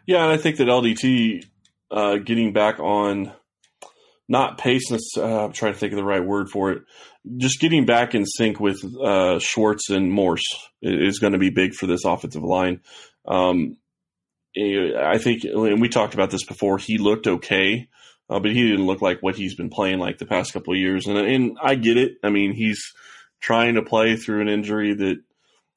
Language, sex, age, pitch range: English, male, 20-39, 95-110 Hz